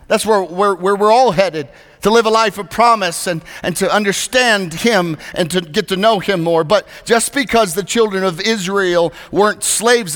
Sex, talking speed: male, 200 wpm